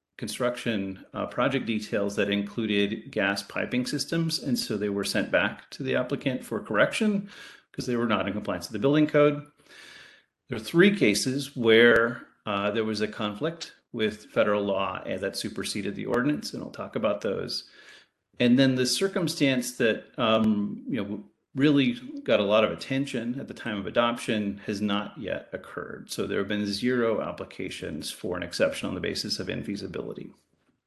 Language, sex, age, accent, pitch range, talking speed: English, male, 40-59, American, 105-145 Hz, 175 wpm